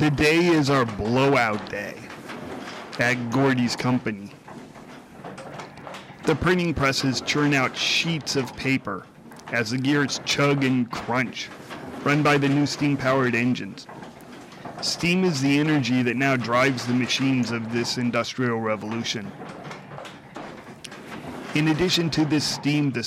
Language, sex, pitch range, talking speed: English, male, 125-145 Hz, 125 wpm